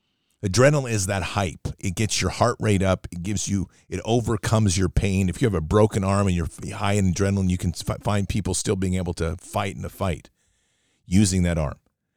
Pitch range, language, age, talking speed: 90-110 Hz, English, 50-69, 215 wpm